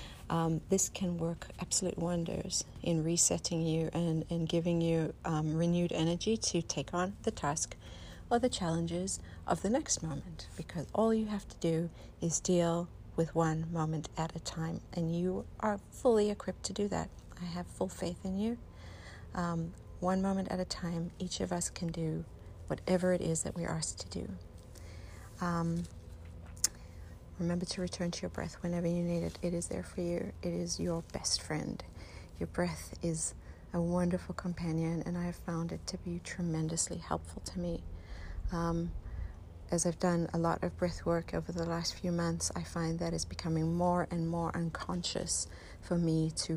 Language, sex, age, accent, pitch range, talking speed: English, female, 50-69, American, 110-175 Hz, 180 wpm